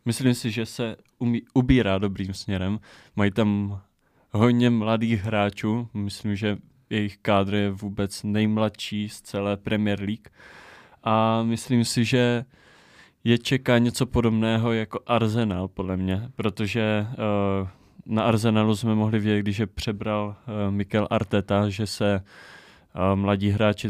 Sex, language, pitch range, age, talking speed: male, Czech, 100-115 Hz, 20-39, 135 wpm